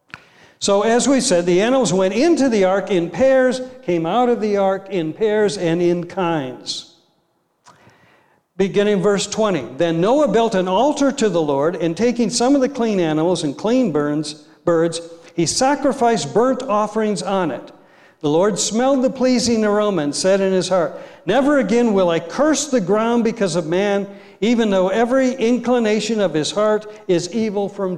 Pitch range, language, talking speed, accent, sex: 170-235 Hz, English, 170 wpm, American, male